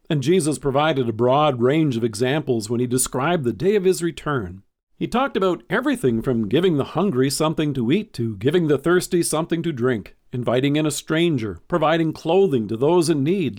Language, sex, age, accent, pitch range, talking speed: English, male, 50-69, American, 130-185 Hz, 195 wpm